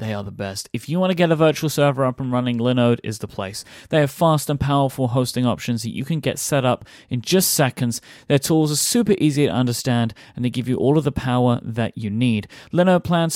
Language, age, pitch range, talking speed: English, 30-49, 120-160 Hz, 245 wpm